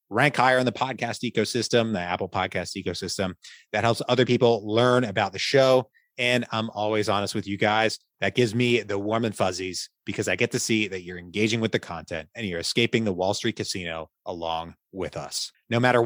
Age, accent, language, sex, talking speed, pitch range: 30-49, American, English, male, 205 wpm, 100-120 Hz